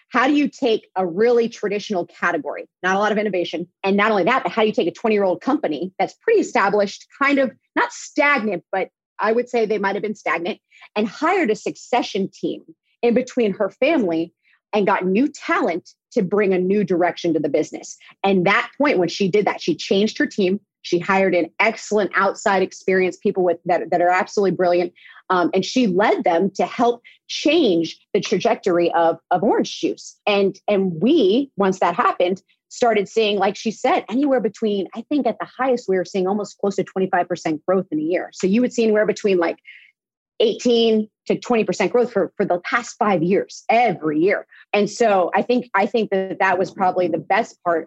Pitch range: 180-230 Hz